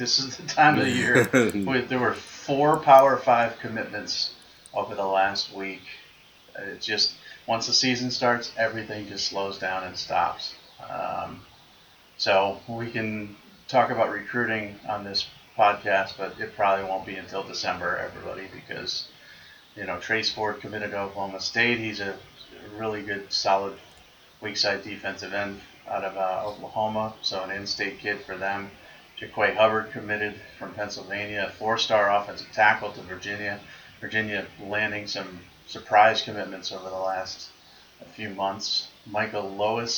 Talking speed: 150 wpm